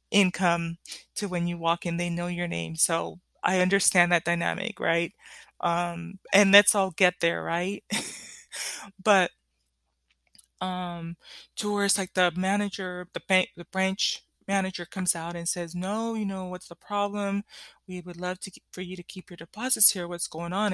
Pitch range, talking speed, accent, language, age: 170-195 Hz, 175 wpm, American, English, 20-39